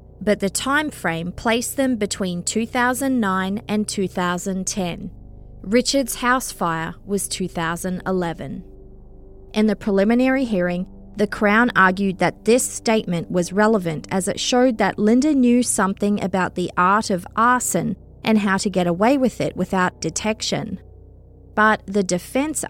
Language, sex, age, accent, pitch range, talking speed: English, female, 20-39, Australian, 175-230 Hz, 135 wpm